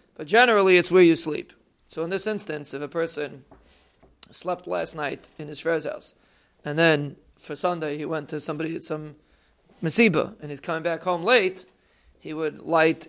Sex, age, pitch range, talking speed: male, 30-49, 150-180 Hz, 185 wpm